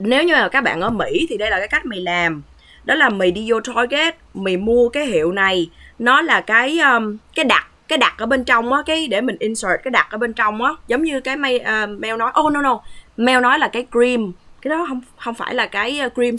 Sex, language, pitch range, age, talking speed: female, Vietnamese, 190-255 Hz, 20-39, 250 wpm